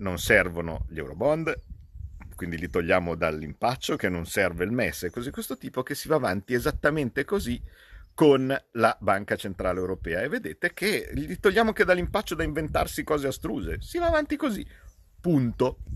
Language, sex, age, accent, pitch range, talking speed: Italian, male, 50-69, native, 85-110 Hz, 165 wpm